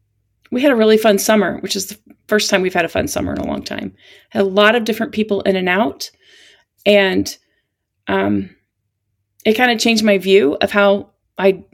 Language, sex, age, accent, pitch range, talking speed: English, female, 30-49, American, 135-225 Hz, 205 wpm